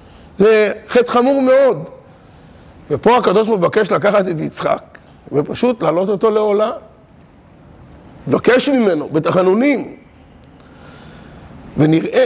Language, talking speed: Hebrew, 95 wpm